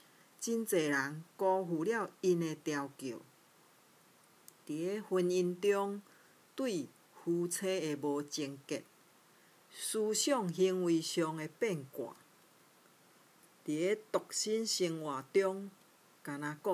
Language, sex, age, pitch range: Chinese, female, 50-69, 145-190 Hz